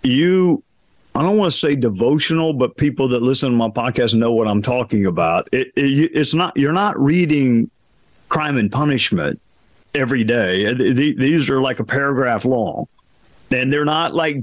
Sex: male